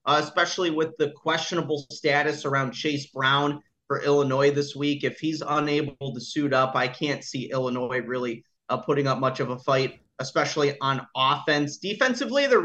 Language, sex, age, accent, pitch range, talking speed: English, male, 30-49, American, 130-165 Hz, 170 wpm